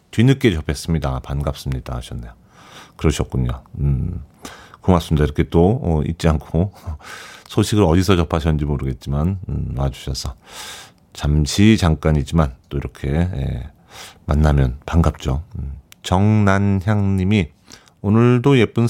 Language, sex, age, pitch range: Korean, male, 40-59, 75-100 Hz